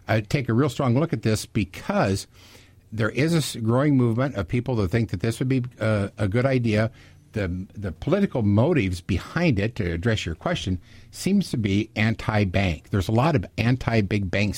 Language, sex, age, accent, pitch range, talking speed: English, male, 50-69, American, 95-125 Hz, 200 wpm